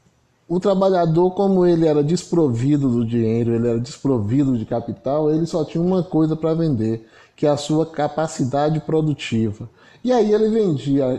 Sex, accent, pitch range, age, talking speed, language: male, Brazilian, 125-170 Hz, 20-39, 160 wpm, Portuguese